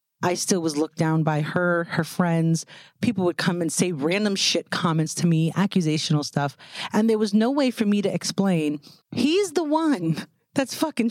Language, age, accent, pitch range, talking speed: English, 30-49, American, 160-200 Hz, 190 wpm